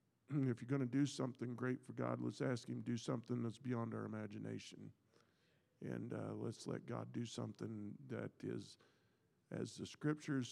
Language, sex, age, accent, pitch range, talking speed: English, male, 50-69, American, 115-135 Hz, 175 wpm